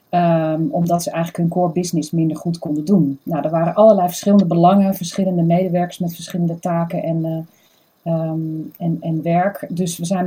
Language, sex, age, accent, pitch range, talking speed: Dutch, female, 40-59, Dutch, 170-205 Hz, 180 wpm